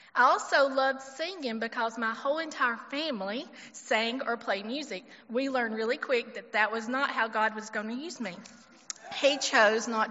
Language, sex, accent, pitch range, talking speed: English, female, American, 220-260 Hz, 185 wpm